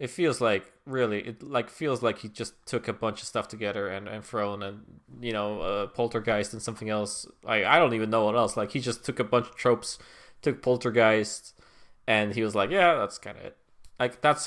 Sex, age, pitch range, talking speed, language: male, 20-39, 105-125 Hz, 230 wpm, English